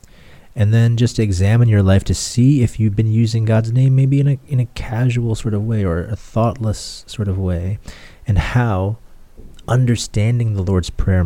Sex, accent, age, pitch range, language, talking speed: male, American, 30-49, 90-110 Hz, English, 185 wpm